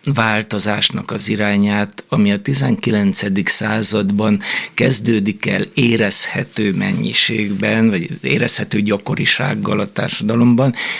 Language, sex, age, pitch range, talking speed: Hungarian, male, 60-79, 105-135 Hz, 85 wpm